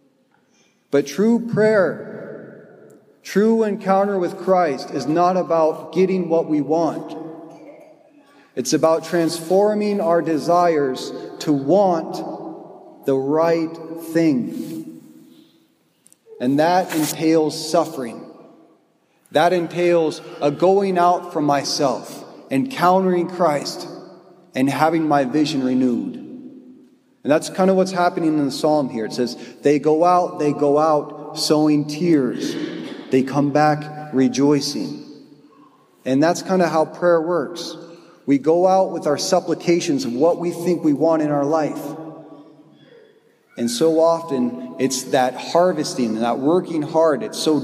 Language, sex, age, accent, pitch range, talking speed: English, male, 40-59, American, 150-180 Hz, 125 wpm